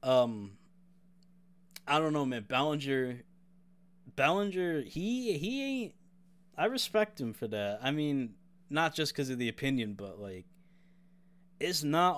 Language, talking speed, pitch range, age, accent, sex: English, 135 wpm, 110-180 Hz, 20-39, American, male